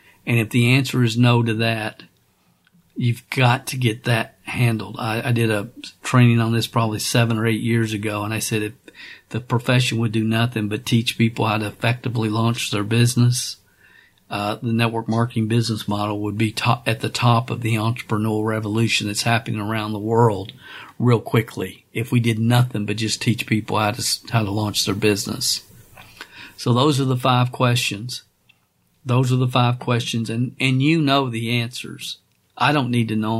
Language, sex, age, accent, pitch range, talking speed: English, male, 50-69, American, 110-120 Hz, 190 wpm